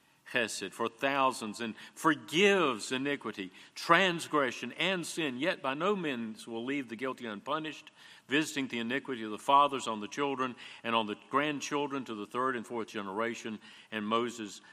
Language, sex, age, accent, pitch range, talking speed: English, male, 50-69, American, 105-140 Hz, 160 wpm